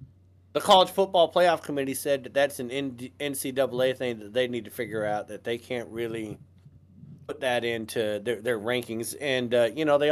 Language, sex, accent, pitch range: English, male, American, 105-165 Hz